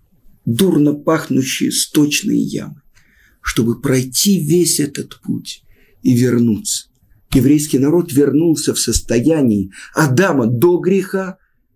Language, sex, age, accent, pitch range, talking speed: Russian, male, 50-69, native, 130-200 Hz, 95 wpm